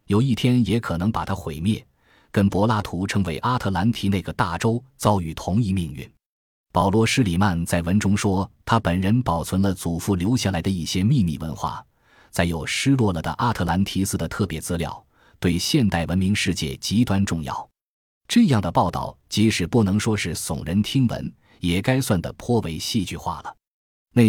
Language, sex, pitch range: Chinese, male, 85-115 Hz